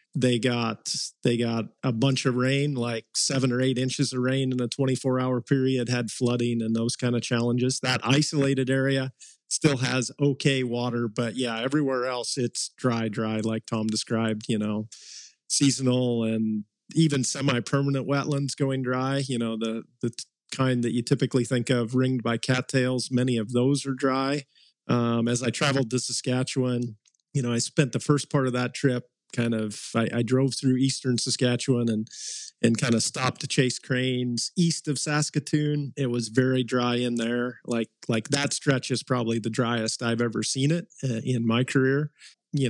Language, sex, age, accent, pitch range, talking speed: English, male, 40-59, American, 120-135 Hz, 180 wpm